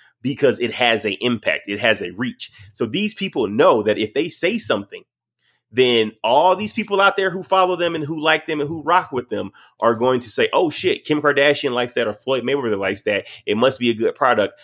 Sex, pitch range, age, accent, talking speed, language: male, 115-180 Hz, 30-49, American, 235 wpm, English